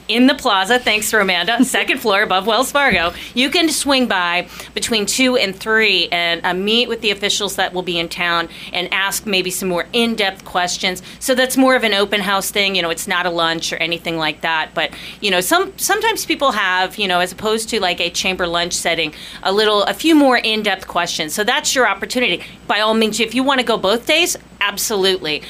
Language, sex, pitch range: English, female, 180-230 Hz